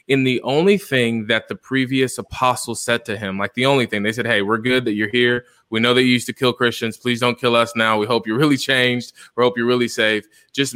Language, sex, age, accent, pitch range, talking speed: English, male, 20-39, American, 115-135 Hz, 270 wpm